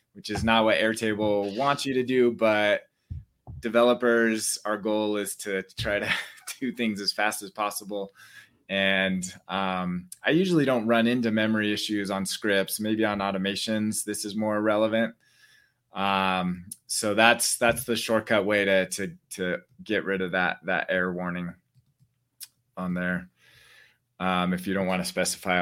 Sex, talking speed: male, 155 wpm